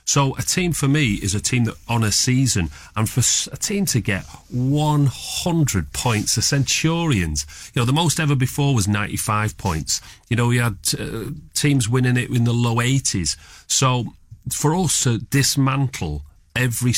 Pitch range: 95-135 Hz